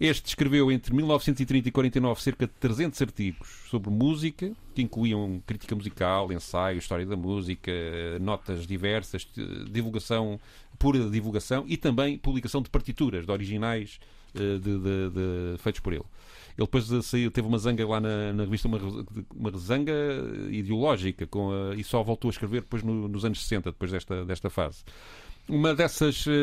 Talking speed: 155 wpm